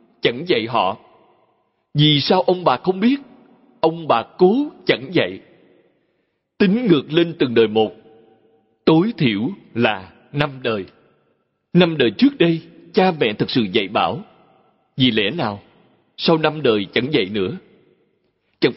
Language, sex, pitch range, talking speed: Vietnamese, male, 125-185 Hz, 145 wpm